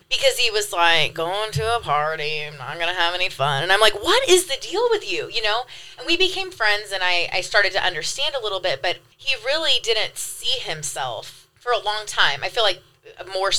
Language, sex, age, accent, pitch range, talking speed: English, female, 20-39, American, 170-210 Hz, 235 wpm